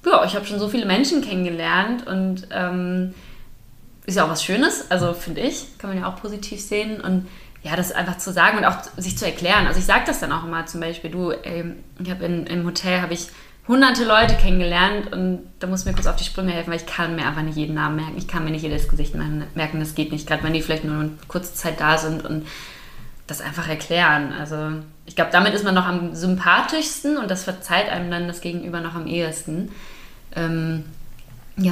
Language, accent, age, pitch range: German, German, 20-39, 165-205 Hz